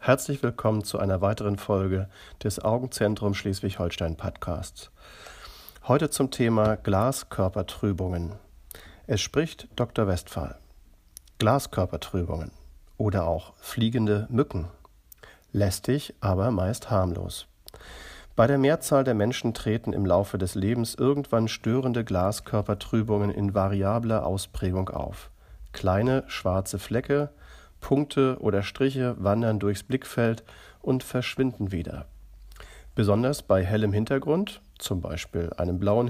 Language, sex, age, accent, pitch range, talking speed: German, male, 40-59, German, 95-125 Hz, 105 wpm